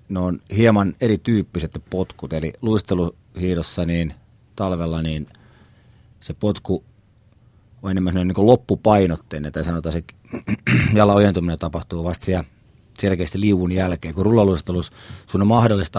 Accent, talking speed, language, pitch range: native, 120 wpm, Finnish, 85-110 Hz